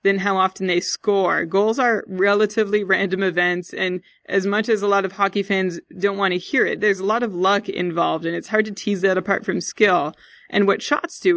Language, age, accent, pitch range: English, 20-39, American, 185-215 Hz